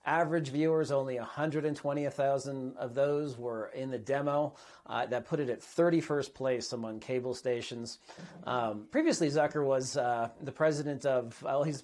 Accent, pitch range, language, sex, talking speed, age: American, 125-150 Hz, English, male, 155 wpm, 40-59